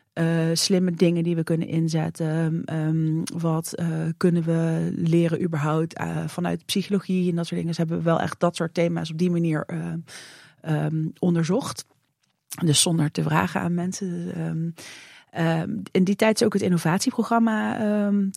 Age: 30-49